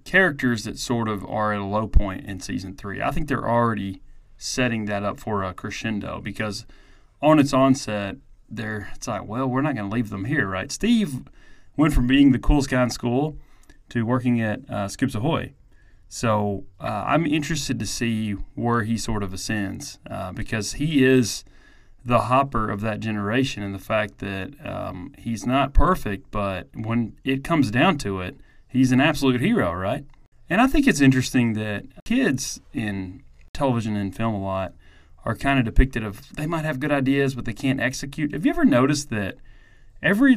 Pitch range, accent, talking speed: 105-135 Hz, American, 185 wpm